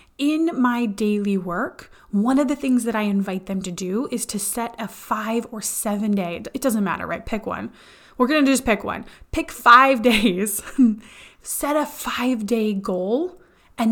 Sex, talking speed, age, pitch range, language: female, 185 wpm, 20-39, 205-255 Hz, English